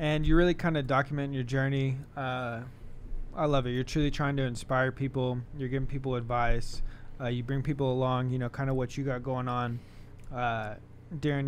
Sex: male